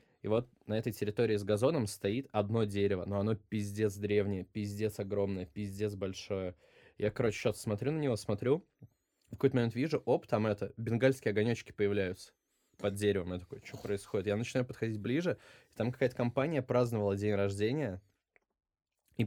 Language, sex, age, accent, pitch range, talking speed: Russian, male, 20-39, native, 100-120 Hz, 165 wpm